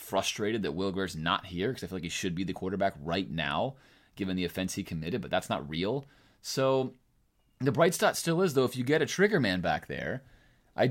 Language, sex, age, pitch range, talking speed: English, male, 30-49, 80-115 Hz, 225 wpm